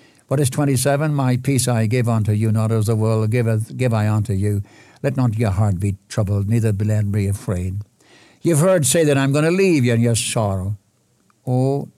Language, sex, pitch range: English, male, 115-140 Hz